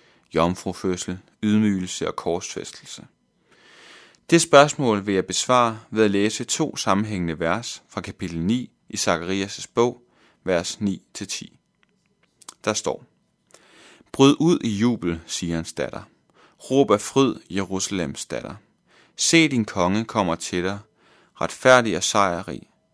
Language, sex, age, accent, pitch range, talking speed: Danish, male, 30-49, native, 95-115 Hz, 125 wpm